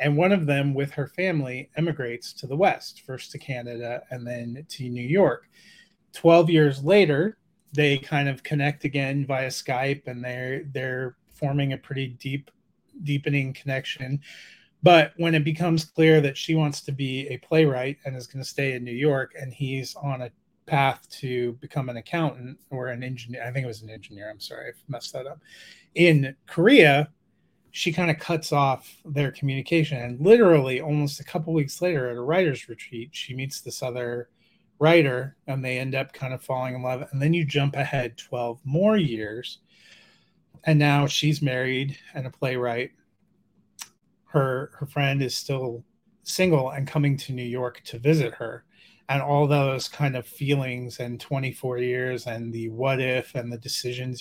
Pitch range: 125-150 Hz